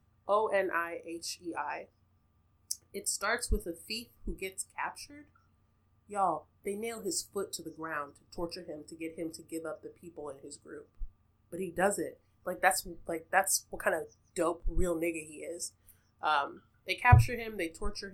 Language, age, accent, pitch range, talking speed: English, 20-39, American, 155-190 Hz, 175 wpm